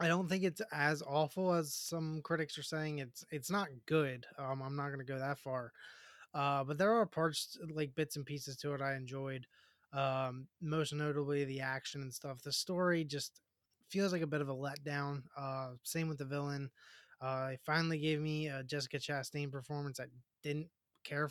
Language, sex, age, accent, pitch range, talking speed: English, male, 20-39, American, 135-160 Hz, 195 wpm